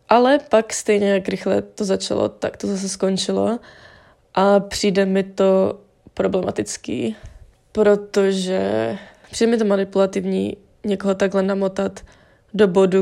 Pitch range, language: 190-205 Hz, Czech